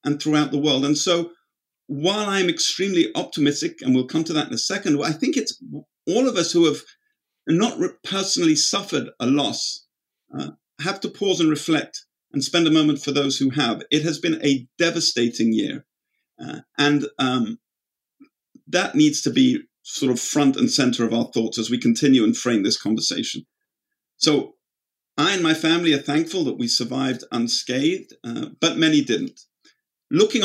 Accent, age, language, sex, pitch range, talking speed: British, 50-69, English, male, 135-205 Hz, 175 wpm